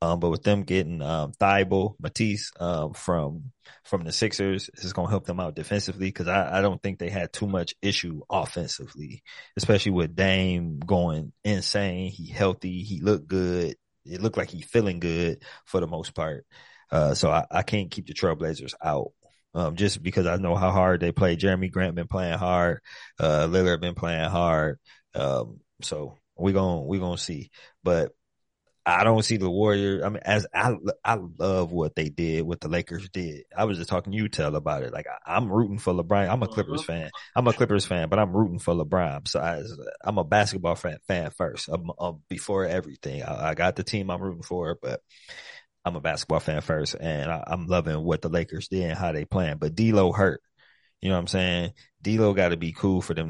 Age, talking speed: 20-39, 210 wpm